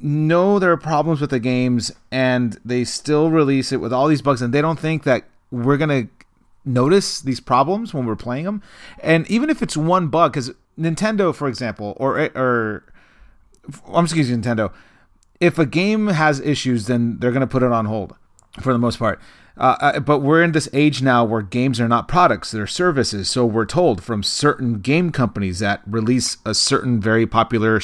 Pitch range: 110-145 Hz